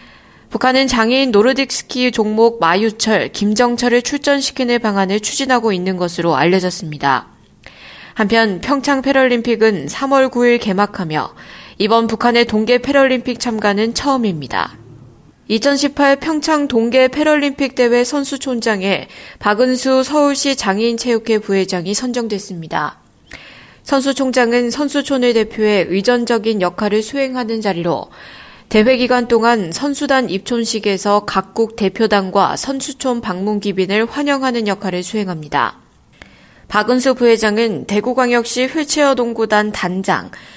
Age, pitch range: 20-39, 205-255 Hz